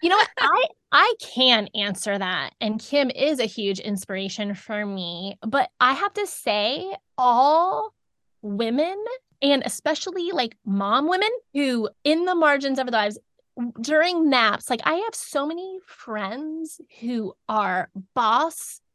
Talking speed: 145 wpm